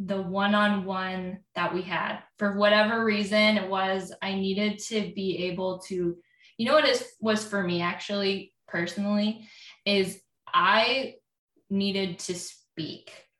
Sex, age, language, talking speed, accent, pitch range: female, 10-29, English, 135 wpm, American, 190-220 Hz